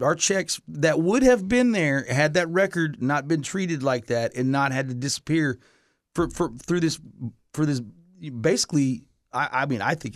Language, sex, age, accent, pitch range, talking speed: English, male, 40-59, American, 115-160 Hz, 190 wpm